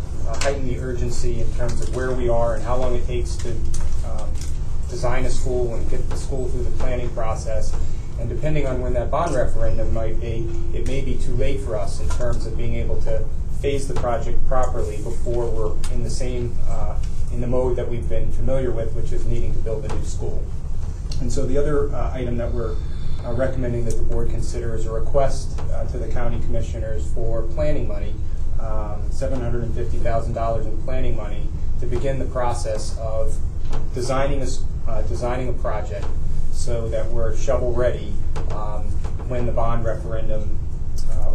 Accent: American